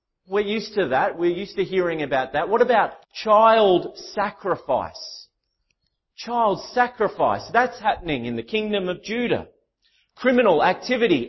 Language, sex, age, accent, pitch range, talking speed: English, male, 30-49, Australian, 160-225 Hz, 135 wpm